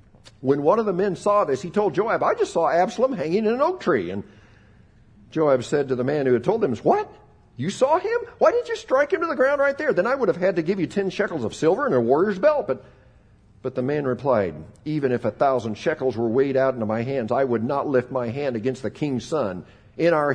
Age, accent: 50-69, American